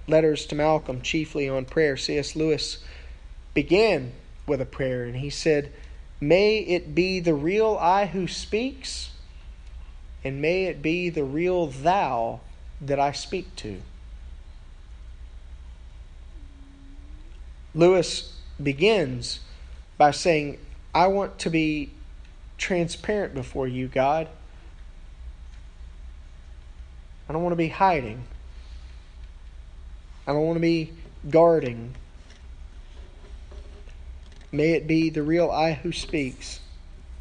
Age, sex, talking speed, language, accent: 30-49, male, 105 wpm, English, American